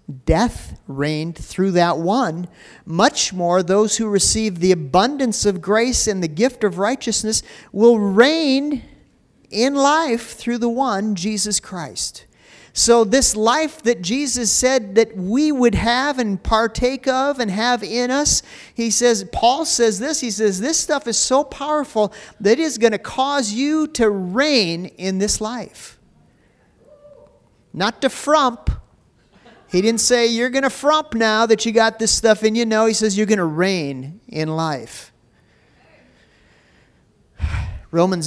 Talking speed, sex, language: 150 wpm, male, English